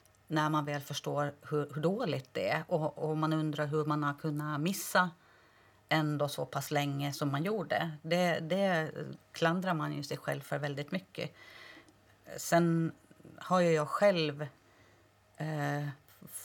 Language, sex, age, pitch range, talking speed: Swedish, female, 30-49, 145-170 Hz, 150 wpm